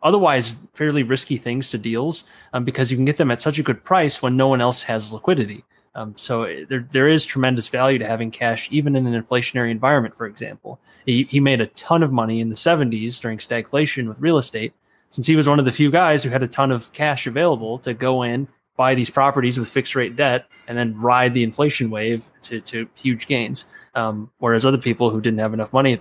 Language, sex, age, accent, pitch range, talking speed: English, male, 20-39, American, 115-135 Hz, 230 wpm